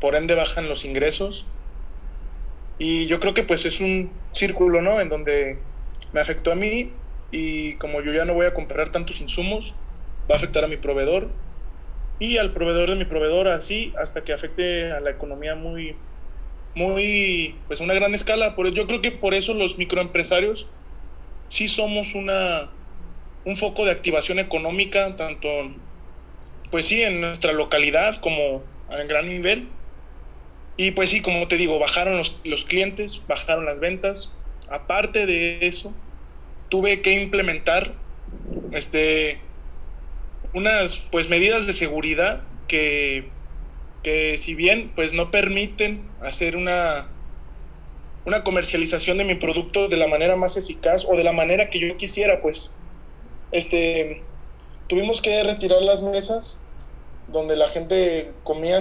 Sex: male